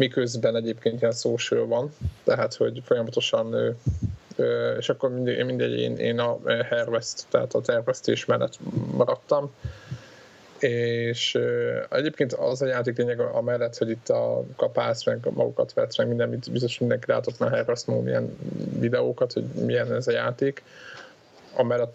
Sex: male